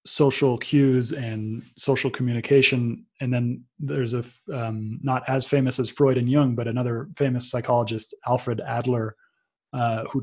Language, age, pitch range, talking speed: English, 20-39, 120-135 Hz, 145 wpm